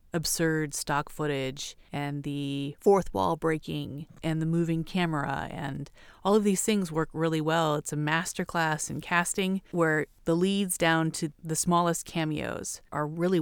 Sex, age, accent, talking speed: female, 30-49, American, 160 wpm